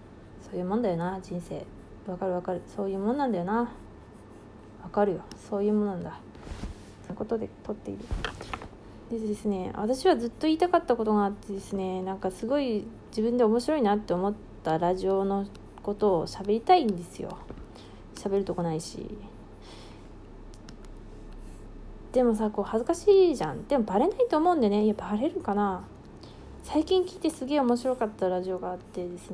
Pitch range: 170-215 Hz